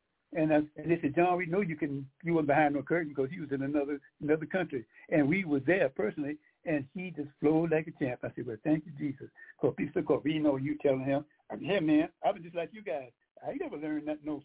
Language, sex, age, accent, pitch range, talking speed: English, male, 60-79, American, 145-175 Hz, 255 wpm